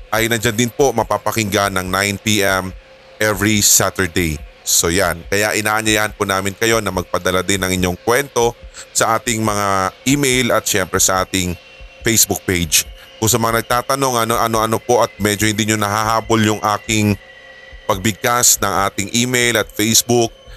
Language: English